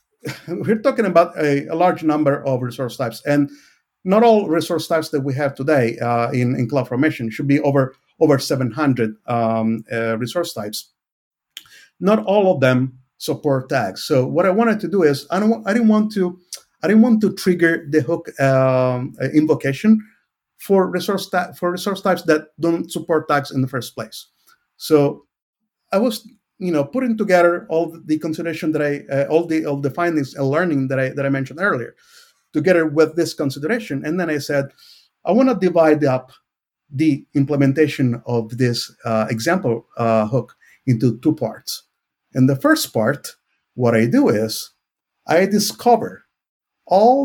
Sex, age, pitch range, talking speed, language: male, 50-69, 130-180 Hz, 175 wpm, English